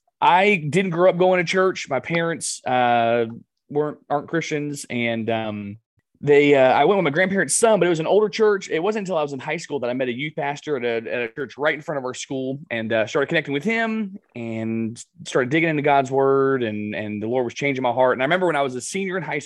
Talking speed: 260 wpm